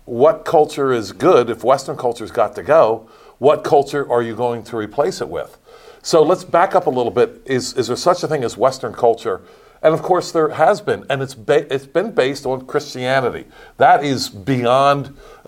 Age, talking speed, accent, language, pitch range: 50-69, 200 wpm, American, English, 120-150 Hz